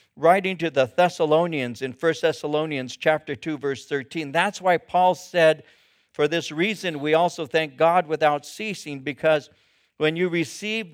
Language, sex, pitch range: English, male, 140-185 Hz